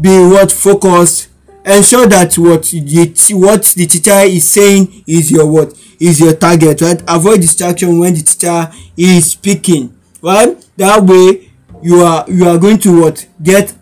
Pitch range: 165-210 Hz